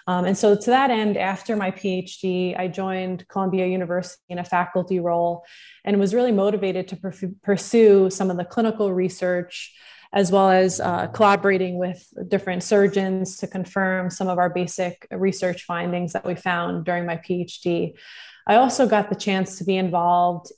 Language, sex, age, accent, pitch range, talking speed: English, female, 20-39, American, 180-195 Hz, 170 wpm